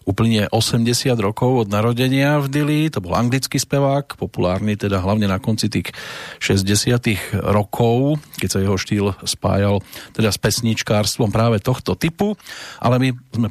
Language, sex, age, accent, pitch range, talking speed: English, male, 40-59, Czech, 105-125 Hz, 140 wpm